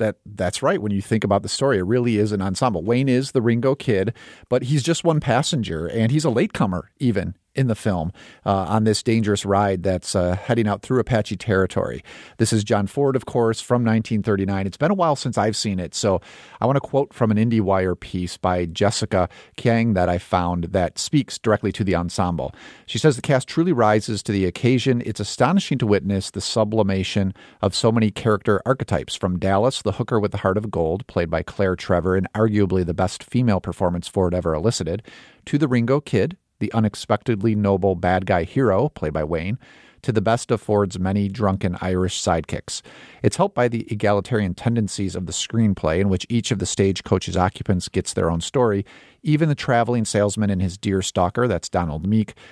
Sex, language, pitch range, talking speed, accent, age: male, English, 95-120 Hz, 205 wpm, American, 40-59